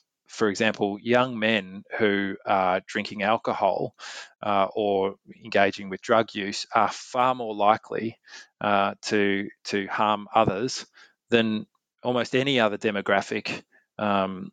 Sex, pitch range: male, 100-115 Hz